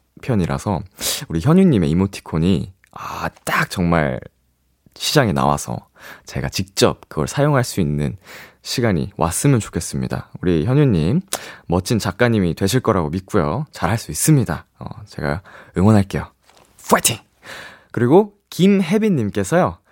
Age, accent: 20-39, native